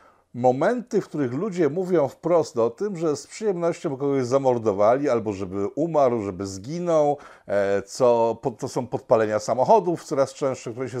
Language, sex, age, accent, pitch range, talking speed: Polish, male, 50-69, native, 120-155 Hz, 145 wpm